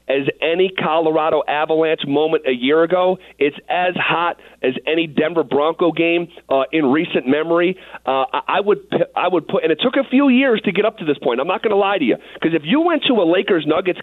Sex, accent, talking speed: male, American, 220 wpm